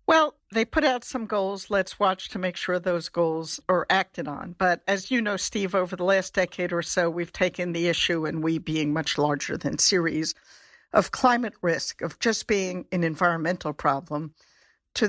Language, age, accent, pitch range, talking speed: English, 60-79, American, 155-195 Hz, 190 wpm